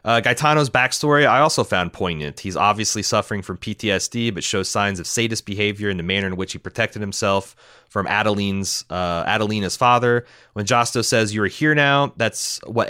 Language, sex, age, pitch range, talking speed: English, male, 30-49, 95-120 Hz, 185 wpm